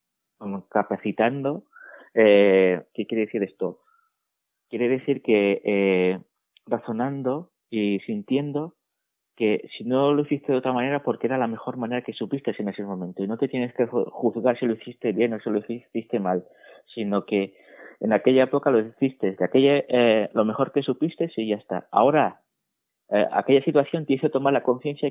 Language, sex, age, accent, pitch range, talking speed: Spanish, male, 30-49, Spanish, 105-130 Hz, 175 wpm